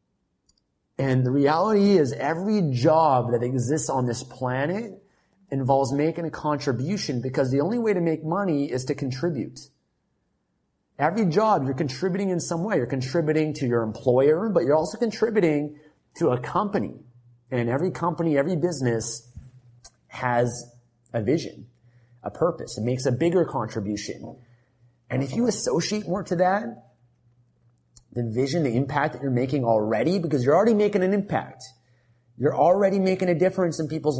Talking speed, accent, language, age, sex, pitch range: 155 wpm, American, English, 30-49, male, 125-170 Hz